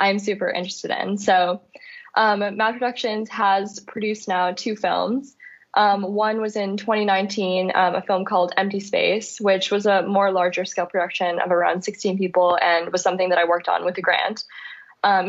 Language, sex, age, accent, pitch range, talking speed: English, female, 10-29, American, 180-205 Hz, 180 wpm